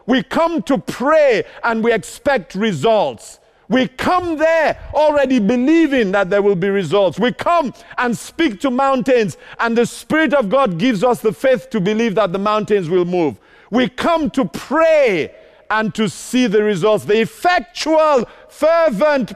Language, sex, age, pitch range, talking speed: English, male, 50-69, 155-245 Hz, 160 wpm